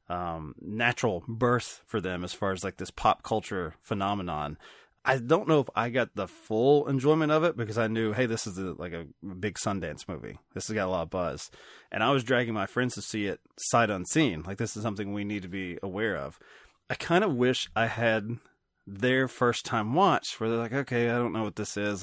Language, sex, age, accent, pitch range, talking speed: English, male, 20-39, American, 95-120 Hz, 230 wpm